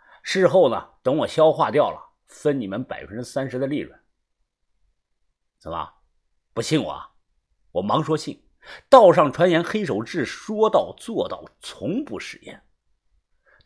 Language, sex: Chinese, male